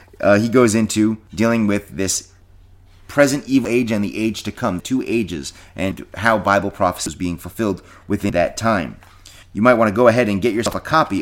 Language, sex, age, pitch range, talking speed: English, male, 30-49, 90-110 Hz, 205 wpm